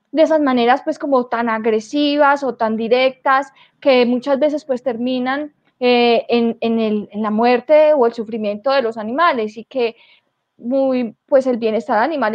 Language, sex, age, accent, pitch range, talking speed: Spanish, female, 20-39, Colombian, 230-280 Hz, 170 wpm